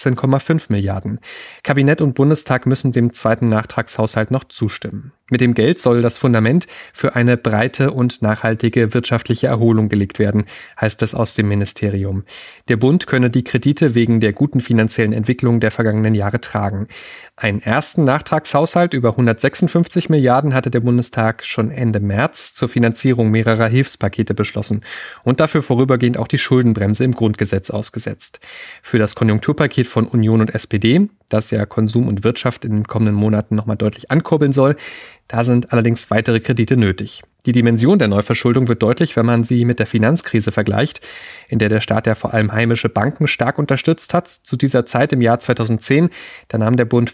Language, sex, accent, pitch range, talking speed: German, male, German, 110-130 Hz, 170 wpm